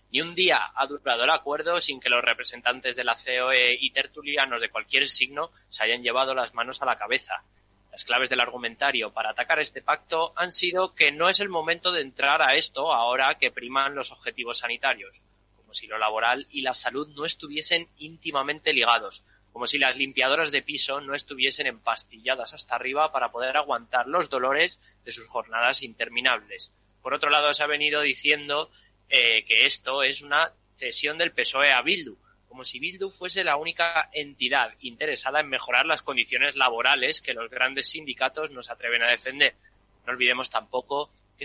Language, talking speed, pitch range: Spanish, 180 wpm, 125-155 Hz